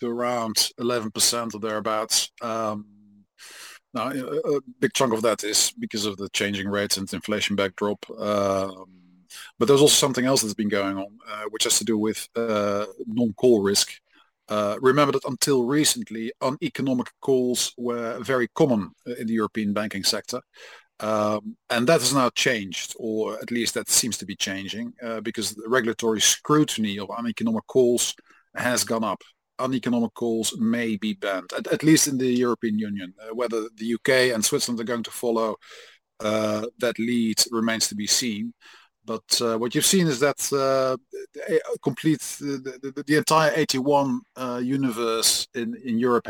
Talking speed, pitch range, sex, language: 165 wpm, 110-135 Hz, male, English